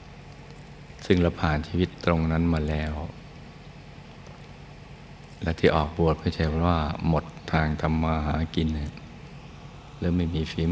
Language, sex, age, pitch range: Thai, male, 60-79, 80-90 Hz